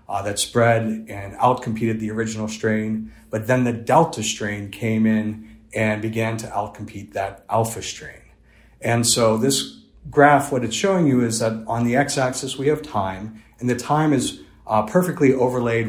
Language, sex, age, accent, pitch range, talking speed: English, male, 40-59, American, 110-125 Hz, 175 wpm